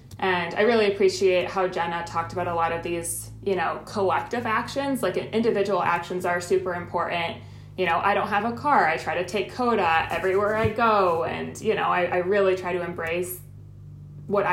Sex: female